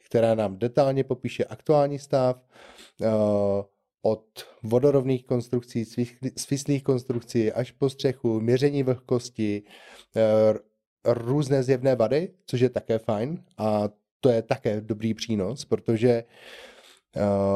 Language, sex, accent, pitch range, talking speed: Czech, male, native, 110-130 Hz, 105 wpm